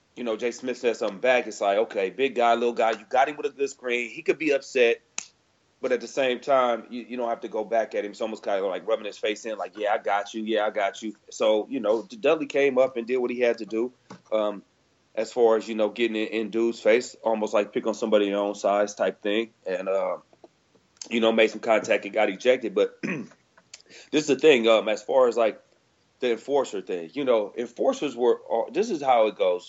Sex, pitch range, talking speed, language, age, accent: male, 110-160 Hz, 255 wpm, English, 30-49, American